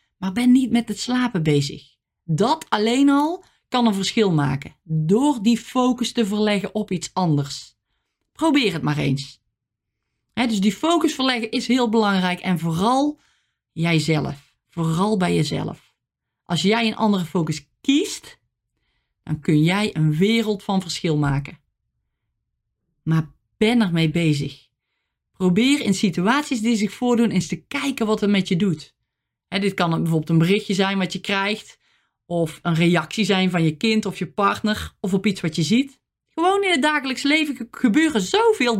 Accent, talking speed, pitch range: Dutch, 160 wpm, 165-240 Hz